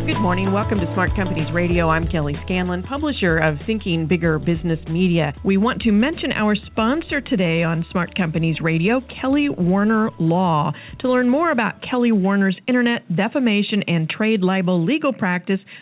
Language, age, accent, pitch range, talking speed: English, 40-59, American, 165-225 Hz, 165 wpm